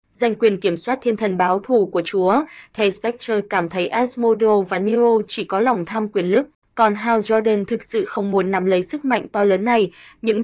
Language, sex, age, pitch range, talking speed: Vietnamese, female, 20-39, 195-225 Hz, 220 wpm